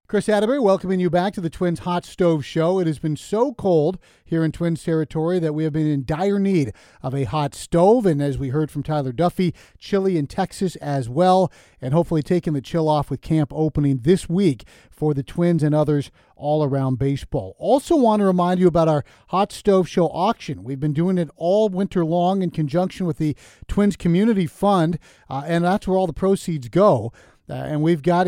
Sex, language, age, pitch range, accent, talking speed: male, English, 40-59, 150-185 Hz, American, 210 wpm